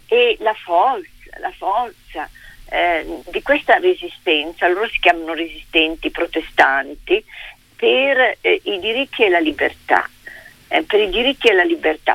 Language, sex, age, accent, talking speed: Italian, female, 50-69, native, 125 wpm